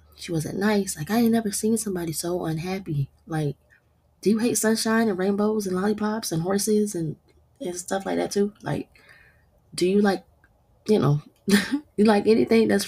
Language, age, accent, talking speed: English, 20-39, American, 175 wpm